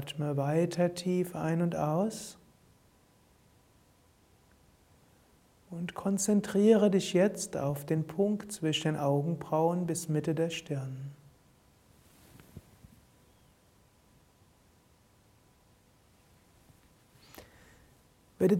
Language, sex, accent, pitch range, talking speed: German, male, German, 145-180 Hz, 70 wpm